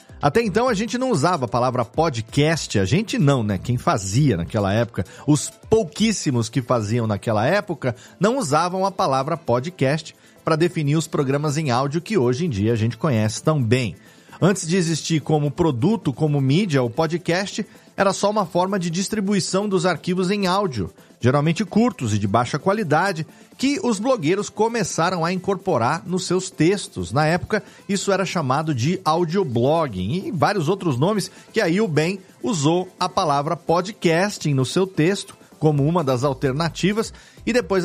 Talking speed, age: 165 wpm, 40-59